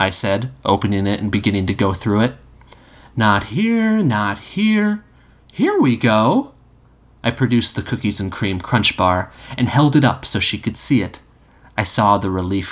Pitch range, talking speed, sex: 100-145 Hz, 180 wpm, male